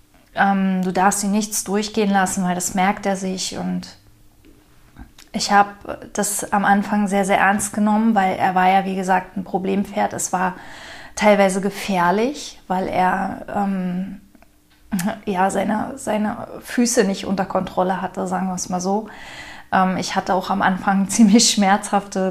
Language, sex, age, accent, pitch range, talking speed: German, female, 20-39, German, 185-205 Hz, 150 wpm